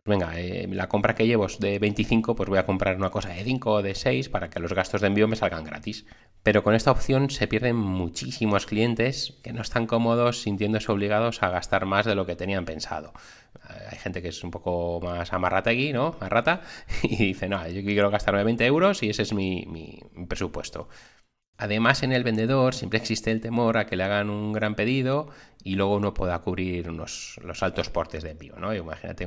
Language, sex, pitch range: Spanish, male, 95-115 Hz